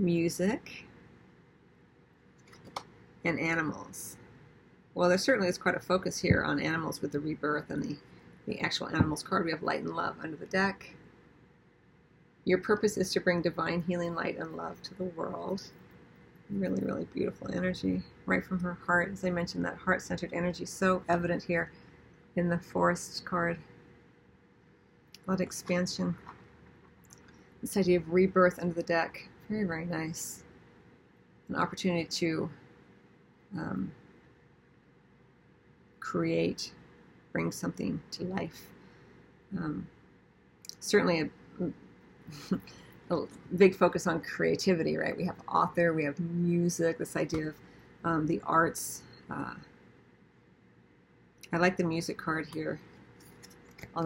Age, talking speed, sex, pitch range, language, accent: 40-59, 130 wpm, female, 155-180 Hz, English, American